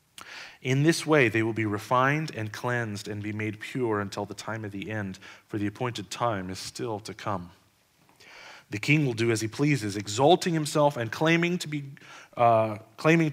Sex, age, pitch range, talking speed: male, 30-49, 120-160 Hz, 190 wpm